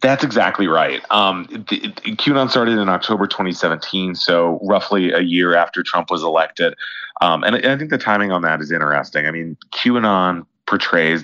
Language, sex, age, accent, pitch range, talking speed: English, male, 30-49, American, 80-100 Hz, 165 wpm